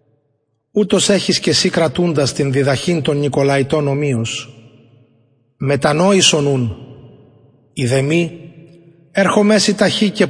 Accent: Greek